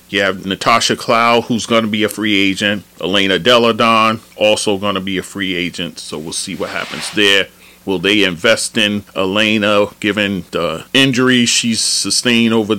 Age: 40-59